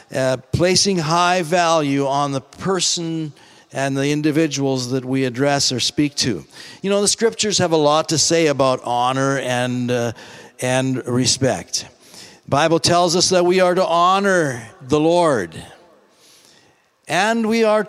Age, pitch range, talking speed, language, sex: 50-69, 135-190 Hz, 150 wpm, English, male